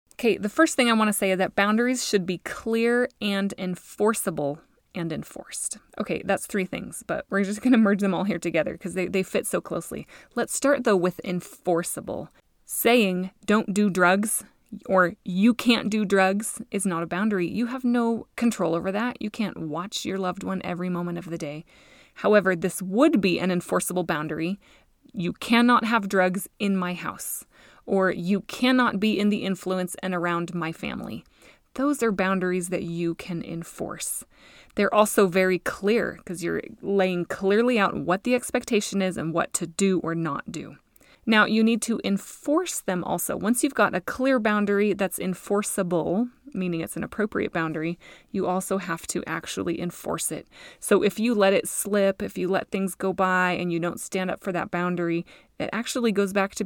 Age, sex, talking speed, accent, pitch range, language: 20-39, female, 185 wpm, American, 180-215 Hz, English